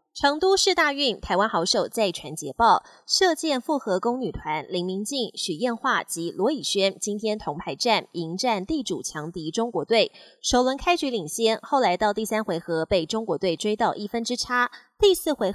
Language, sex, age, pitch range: Chinese, female, 20-39, 190-270 Hz